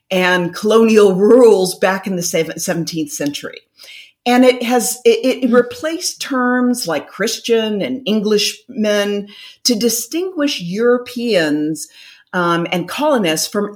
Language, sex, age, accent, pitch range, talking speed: English, female, 50-69, American, 180-245 Hz, 115 wpm